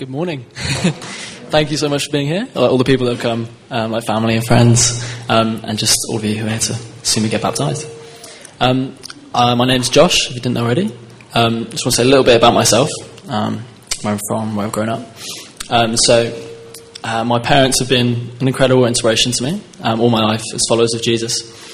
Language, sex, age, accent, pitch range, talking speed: English, male, 20-39, British, 110-125 Hz, 235 wpm